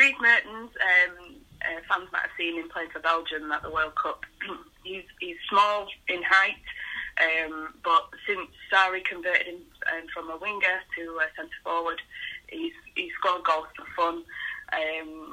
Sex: female